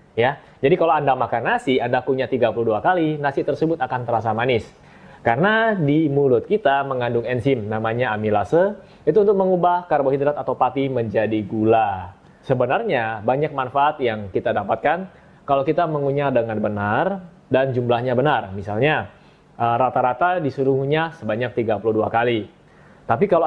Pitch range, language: 115-155 Hz, Indonesian